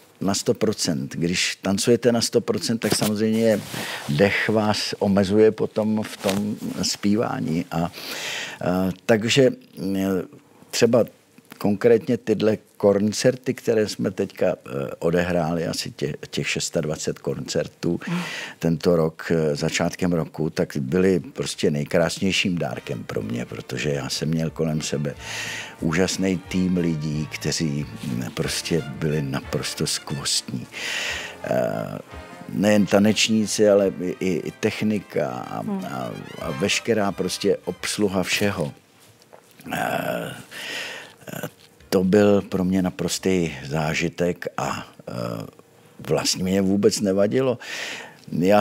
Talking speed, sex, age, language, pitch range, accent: 100 wpm, male, 50-69, Czech, 80-100 Hz, native